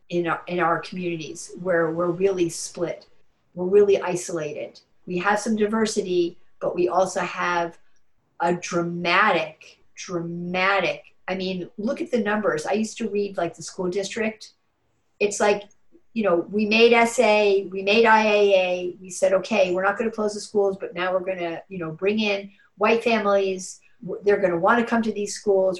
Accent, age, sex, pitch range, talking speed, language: American, 50-69, female, 185-230 Hz, 165 wpm, English